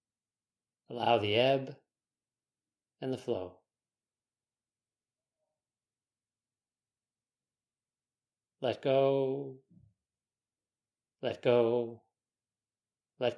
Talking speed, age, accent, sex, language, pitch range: 50 wpm, 40-59, American, male, English, 115-130 Hz